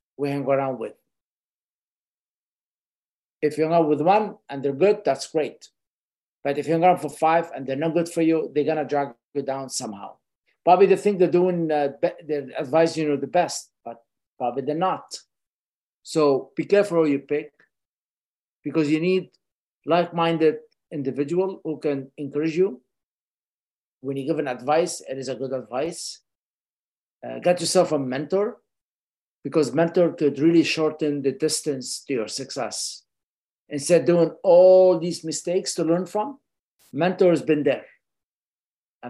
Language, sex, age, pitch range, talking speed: English, male, 50-69, 140-170 Hz, 160 wpm